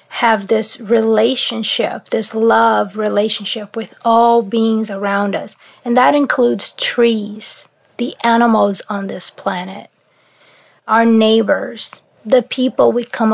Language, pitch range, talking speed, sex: English, 205-235 Hz, 115 wpm, female